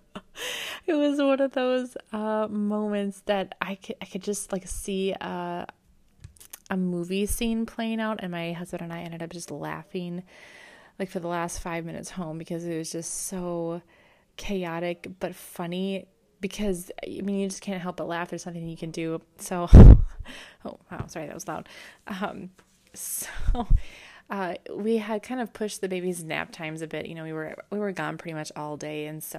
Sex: female